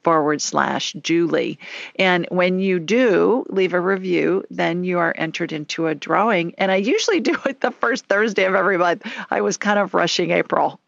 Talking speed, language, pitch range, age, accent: 190 wpm, English, 165-205 Hz, 50-69, American